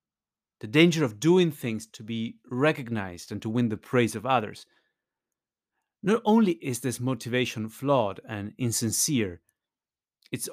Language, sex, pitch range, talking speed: English, male, 115-150 Hz, 135 wpm